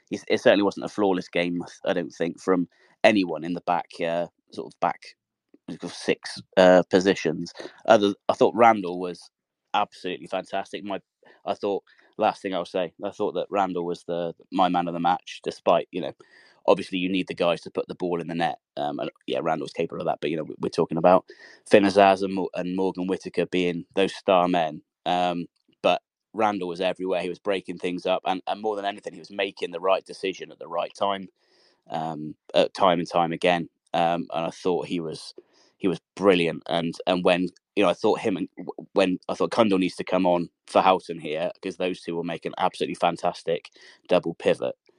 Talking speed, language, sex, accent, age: 205 wpm, English, male, British, 20-39